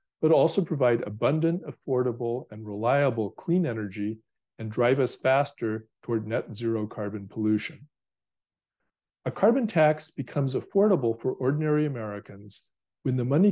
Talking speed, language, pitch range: 130 wpm, English, 110-150 Hz